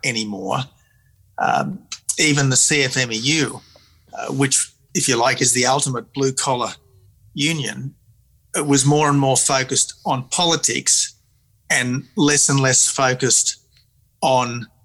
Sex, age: male, 40-59